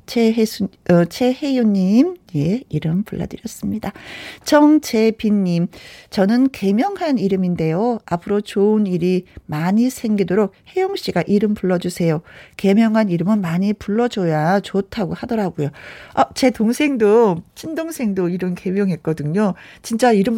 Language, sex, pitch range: Korean, female, 180-250 Hz